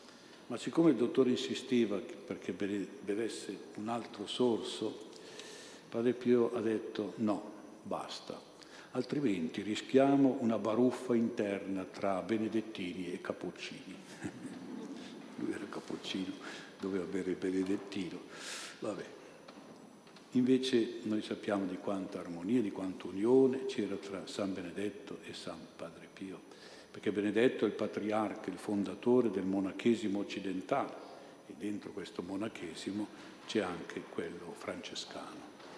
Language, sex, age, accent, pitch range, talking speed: Italian, male, 60-79, native, 100-120 Hz, 115 wpm